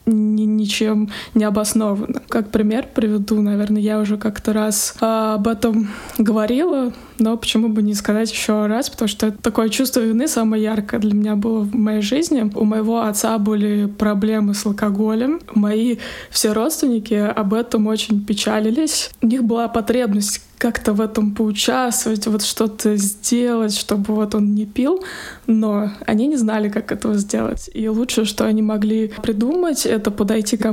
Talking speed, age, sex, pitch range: 160 wpm, 20-39, female, 215-235 Hz